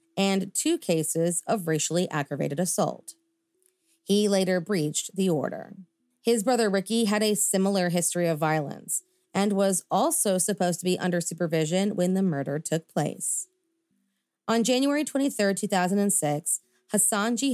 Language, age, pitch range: English, 30-49, 165-210 Hz